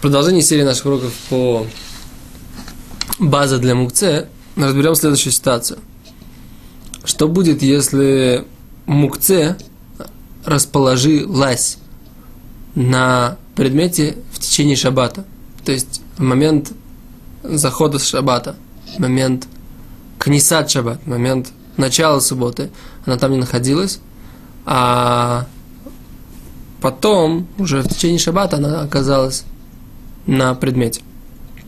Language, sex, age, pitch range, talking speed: Russian, male, 20-39, 130-155 Hz, 100 wpm